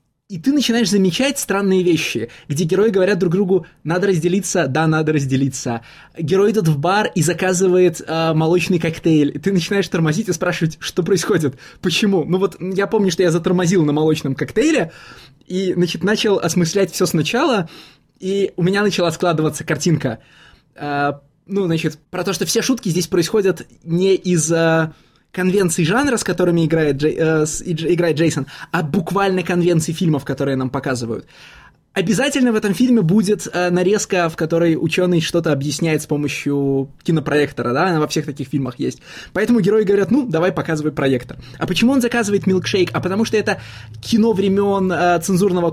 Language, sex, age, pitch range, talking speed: Russian, male, 20-39, 155-190 Hz, 165 wpm